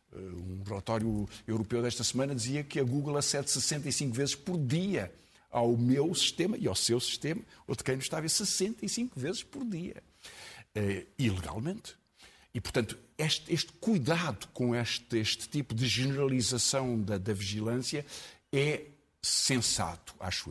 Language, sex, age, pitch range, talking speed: Portuguese, male, 50-69, 110-145 Hz, 150 wpm